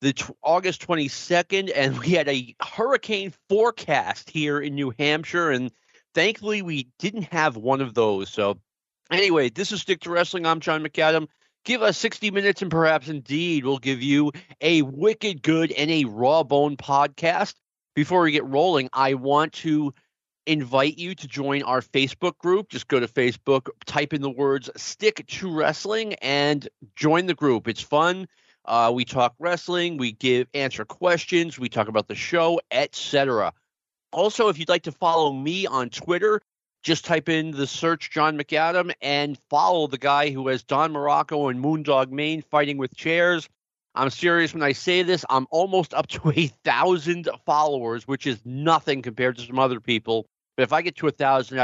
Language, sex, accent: English, male, American